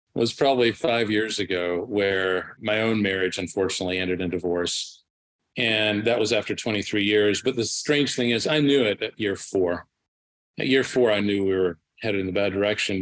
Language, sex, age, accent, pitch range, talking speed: English, male, 40-59, American, 95-115 Hz, 195 wpm